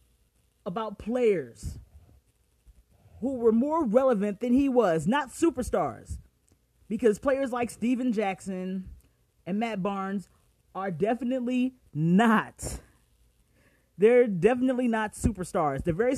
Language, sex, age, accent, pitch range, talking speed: English, male, 30-49, American, 155-230 Hz, 105 wpm